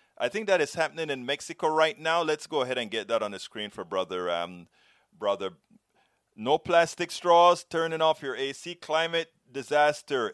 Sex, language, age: male, English, 30-49